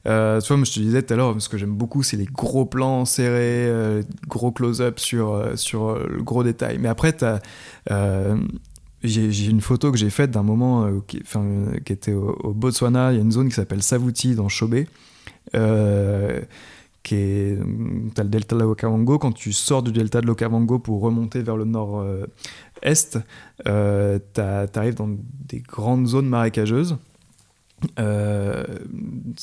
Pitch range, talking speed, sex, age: 105-125 Hz, 170 wpm, male, 20-39